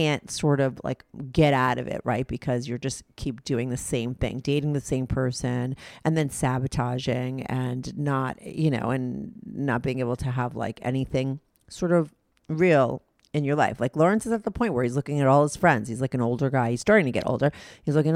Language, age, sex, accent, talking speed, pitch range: English, 40-59, female, American, 220 wpm, 125-165 Hz